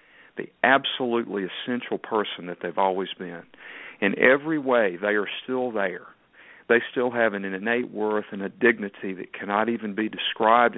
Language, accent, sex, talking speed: English, American, male, 160 wpm